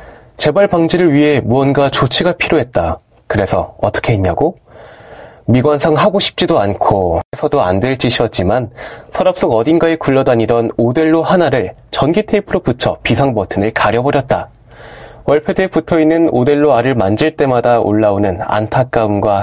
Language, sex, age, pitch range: Korean, male, 20-39, 115-160 Hz